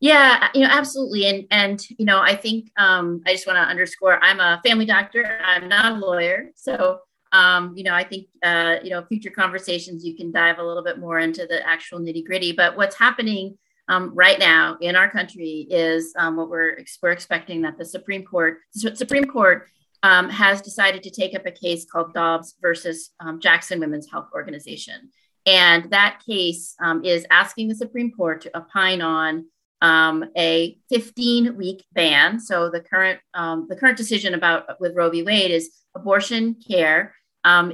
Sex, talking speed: female, 185 wpm